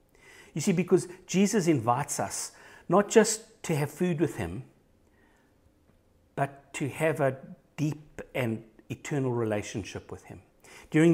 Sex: male